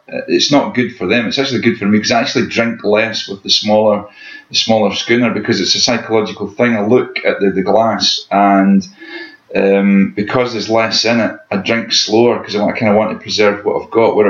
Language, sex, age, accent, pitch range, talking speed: English, male, 30-49, British, 100-120 Hz, 230 wpm